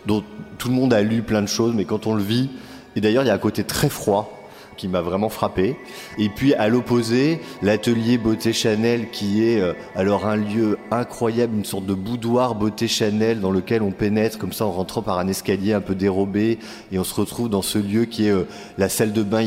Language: French